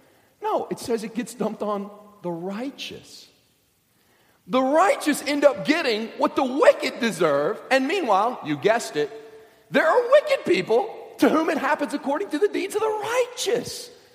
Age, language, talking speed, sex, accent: 40-59, English, 160 wpm, male, American